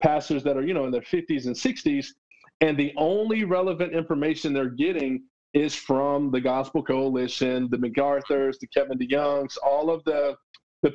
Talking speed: 170 wpm